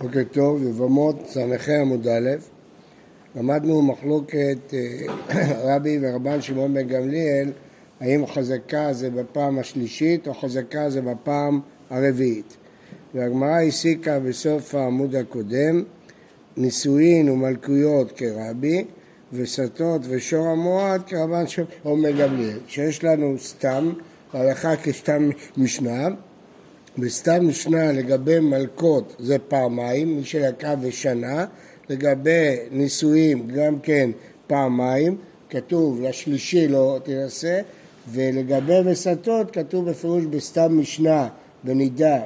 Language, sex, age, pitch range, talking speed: Hebrew, male, 60-79, 130-165 Hz, 100 wpm